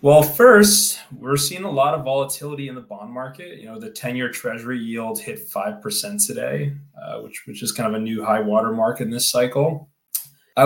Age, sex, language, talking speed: 20-39, male, English, 195 wpm